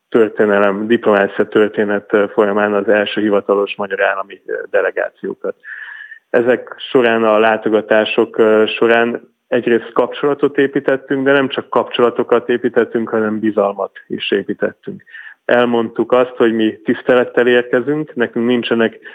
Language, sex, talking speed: Hungarian, male, 105 wpm